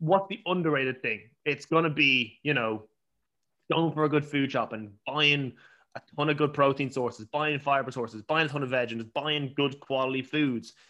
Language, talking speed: English, 200 wpm